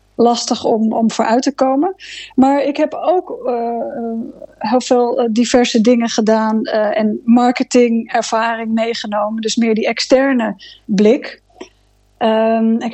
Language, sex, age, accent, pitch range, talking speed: Dutch, female, 20-39, Dutch, 225-255 Hz, 125 wpm